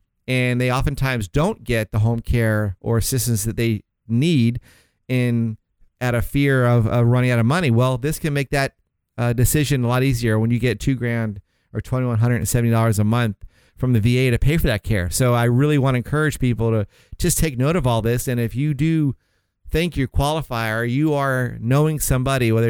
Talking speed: 215 wpm